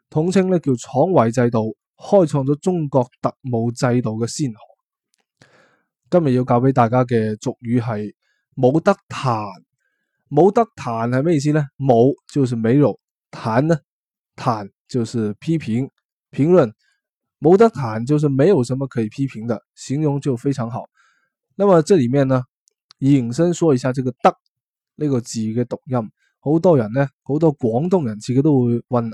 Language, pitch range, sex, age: Chinese, 120-155 Hz, male, 20-39